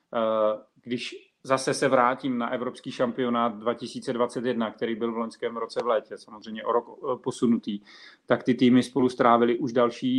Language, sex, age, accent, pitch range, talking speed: Czech, male, 40-59, native, 120-130 Hz, 155 wpm